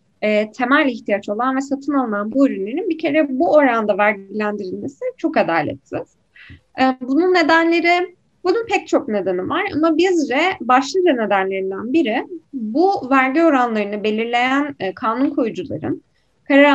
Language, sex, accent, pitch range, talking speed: Turkish, female, native, 225-315 Hz, 135 wpm